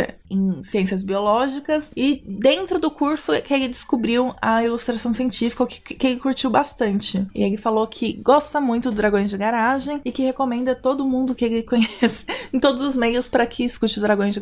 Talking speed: 195 wpm